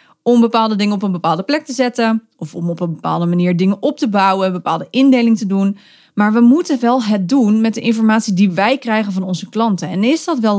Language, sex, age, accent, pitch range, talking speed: Dutch, female, 30-49, Dutch, 190-235 Hz, 245 wpm